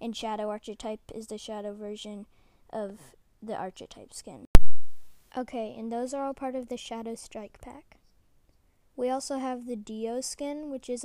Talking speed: 165 wpm